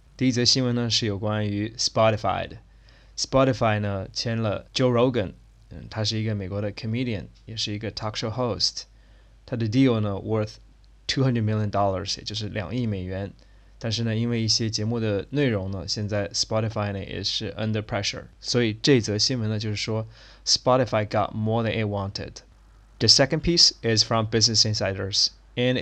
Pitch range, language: 105-125 Hz, Chinese